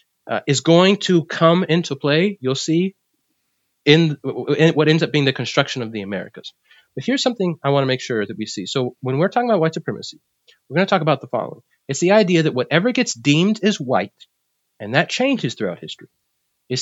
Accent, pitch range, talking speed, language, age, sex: American, 125-165 Hz, 215 wpm, English, 30-49, male